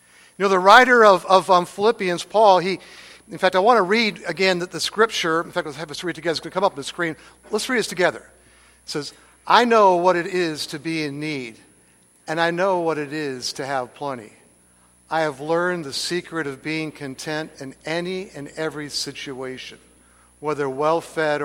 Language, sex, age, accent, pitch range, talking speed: English, male, 60-79, American, 140-195 Hz, 205 wpm